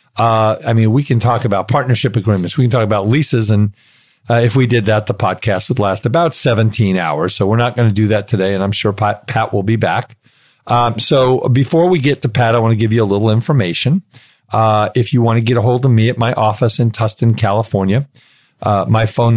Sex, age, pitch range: male, 50-69, 105-125 Hz